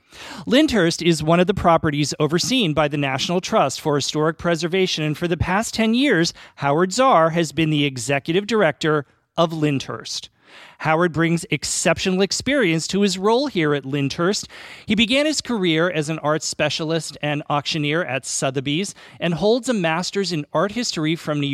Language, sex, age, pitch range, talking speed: English, male, 40-59, 145-185 Hz, 165 wpm